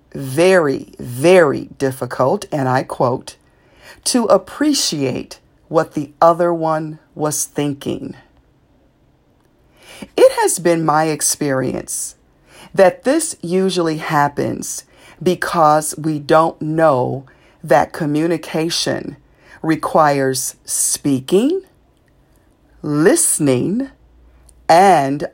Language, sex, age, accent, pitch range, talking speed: English, female, 40-59, American, 140-170 Hz, 80 wpm